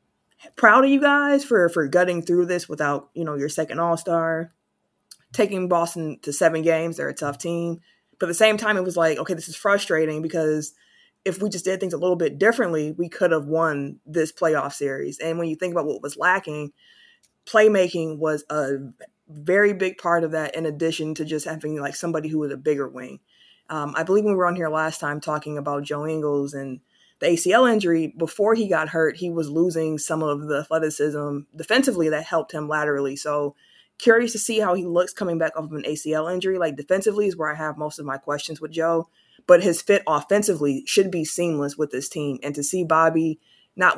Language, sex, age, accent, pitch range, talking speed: English, female, 20-39, American, 150-180 Hz, 210 wpm